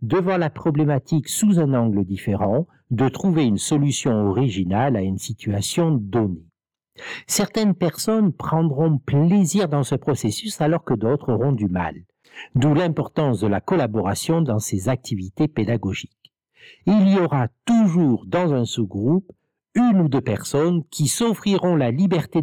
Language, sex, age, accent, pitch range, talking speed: French, male, 60-79, French, 120-180 Hz, 140 wpm